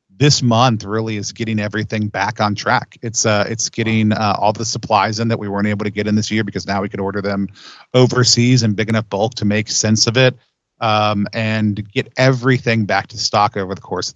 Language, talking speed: English, 230 wpm